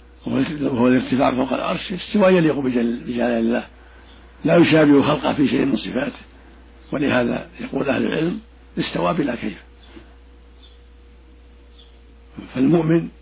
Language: Arabic